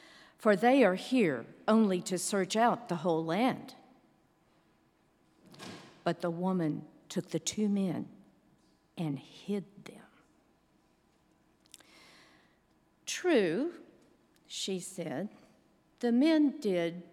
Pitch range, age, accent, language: 175-235 Hz, 50-69, American, English